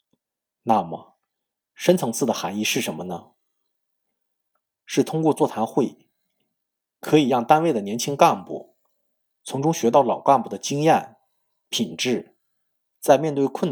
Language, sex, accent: Chinese, male, native